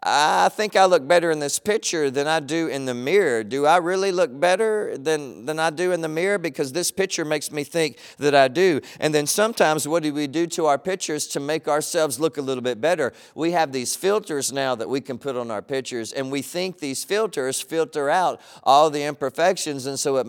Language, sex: English, male